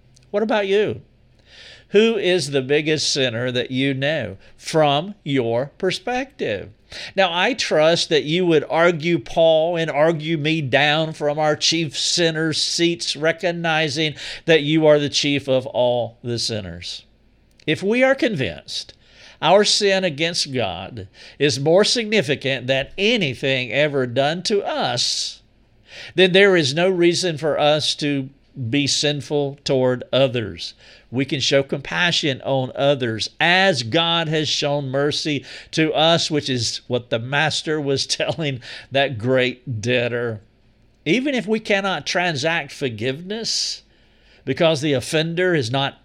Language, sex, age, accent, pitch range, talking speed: English, male, 50-69, American, 130-170 Hz, 135 wpm